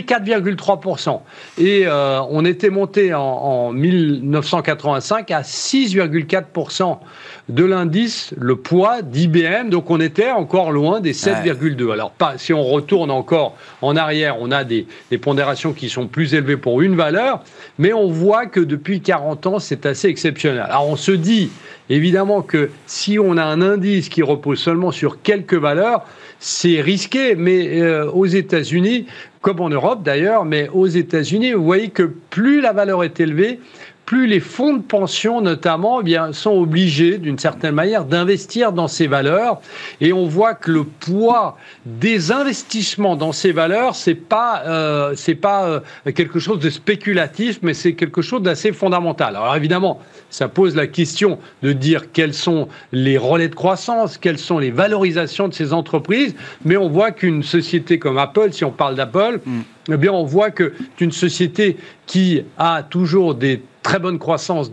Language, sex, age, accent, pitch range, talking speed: French, male, 40-59, French, 155-195 Hz, 170 wpm